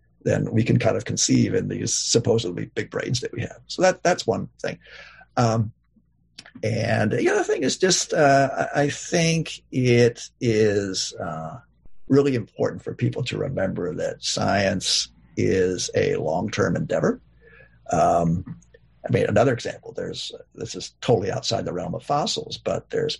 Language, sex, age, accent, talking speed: English, male, 50-69, American, 155 wpm